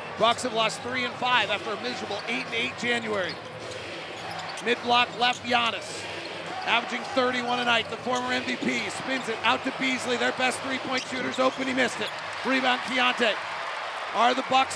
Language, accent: English, American